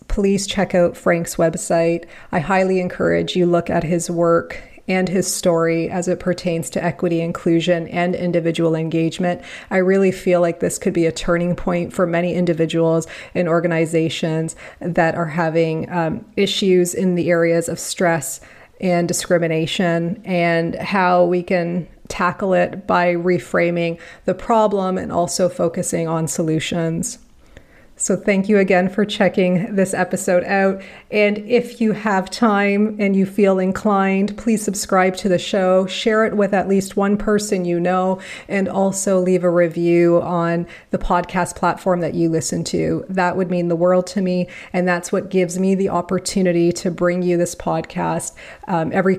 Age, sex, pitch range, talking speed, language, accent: 30-49, female, 170-190 Hz, 160 wpm, English, American